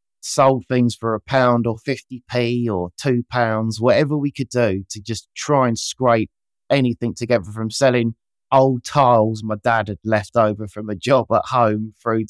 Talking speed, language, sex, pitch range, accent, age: 175 wpm, English, male, 115-135 Hz, British, 20-39